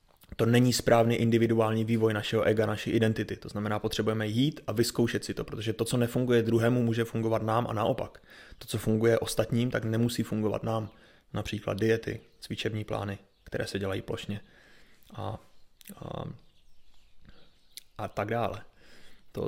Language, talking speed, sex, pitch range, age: Czech, 150 wpm, male, 110-125 Hz, 20-39